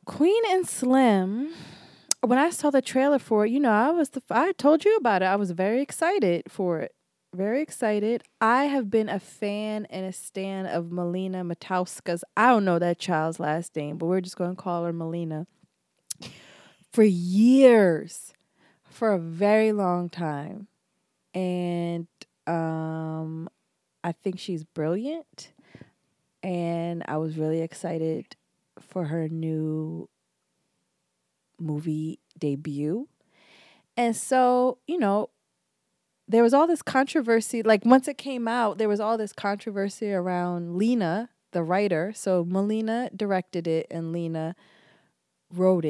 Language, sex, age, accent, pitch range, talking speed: English, female, 20-39, American, 170-225 Hz, 140 wpm